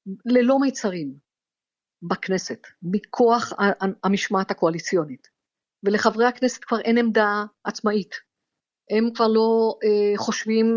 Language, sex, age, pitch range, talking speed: Hebrew, female, 50-69, 185-230 Hz, 95 wpm